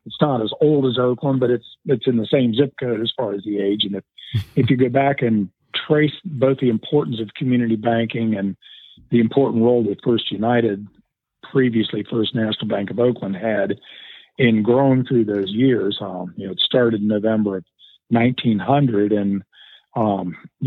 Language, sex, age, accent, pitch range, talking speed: English, male, 50-69, American, 105-120 Hz, 185 wpm